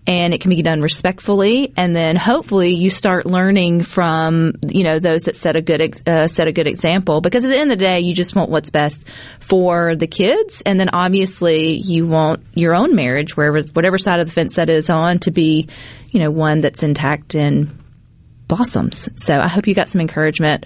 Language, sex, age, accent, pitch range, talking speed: English, female, 30-49, American, 160-200 Hz, 210 wpm